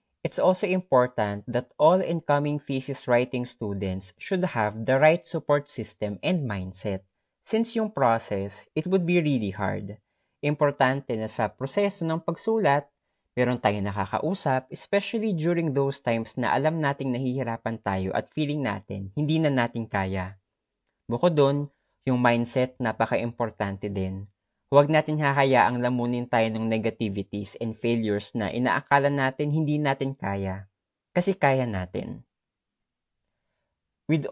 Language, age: Filipino, 20-39